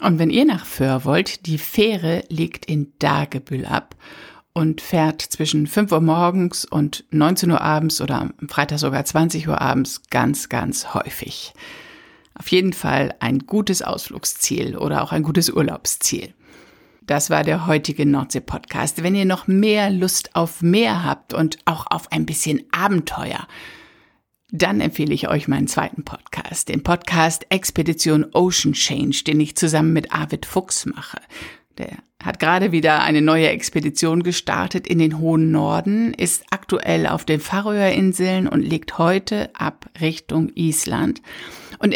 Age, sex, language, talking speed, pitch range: 60-79, female, German, 150 wpm, 150-185 Hz